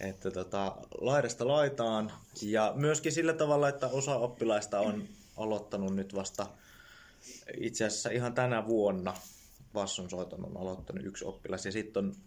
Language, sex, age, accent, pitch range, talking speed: Finnish, male, 20-39, native, 95-120 Hz, 125 wpm